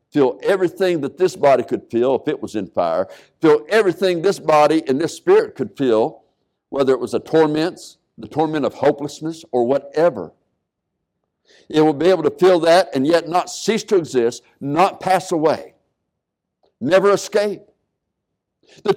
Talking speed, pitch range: 160 wpm, 140-190 Hz